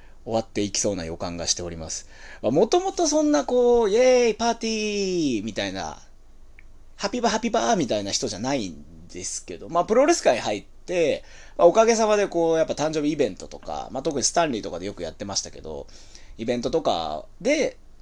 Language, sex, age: Japanese, male, 30-49